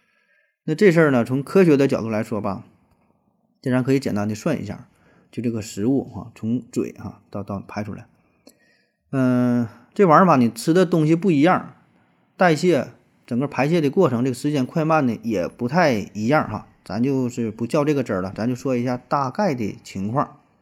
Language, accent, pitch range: Chinese, native, 110-145 Hz